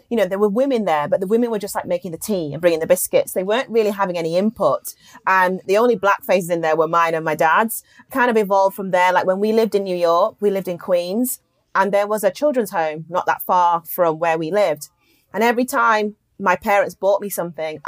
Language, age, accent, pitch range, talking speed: English, 30-49, British, 165-200 Hz, 250 wpm